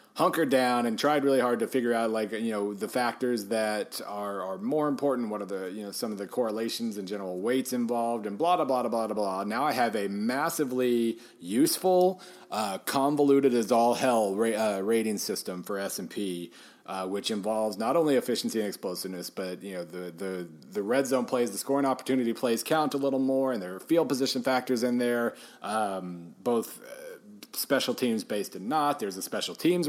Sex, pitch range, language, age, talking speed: male, 110-135 Hz, English, 30-49, 205 wpm